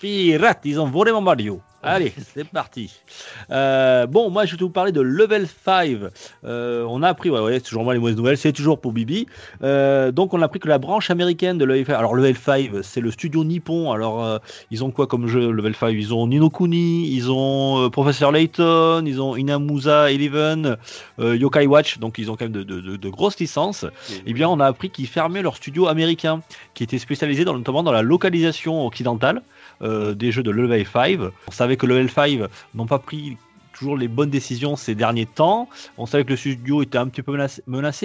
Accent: French